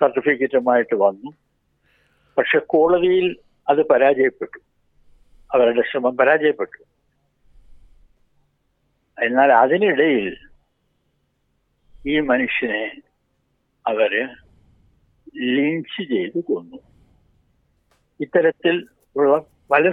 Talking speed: 60 wpm